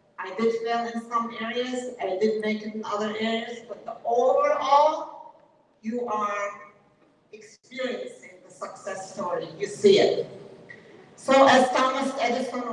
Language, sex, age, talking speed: English, female, 50-69, 135 wpm